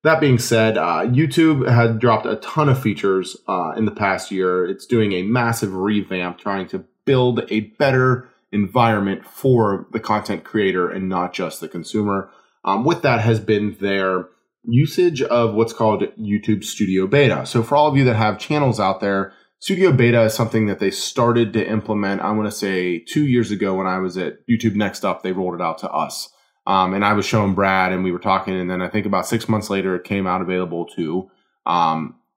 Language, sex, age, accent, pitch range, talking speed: English, male, 20-39, American, 95-120 Hz, 210 wpm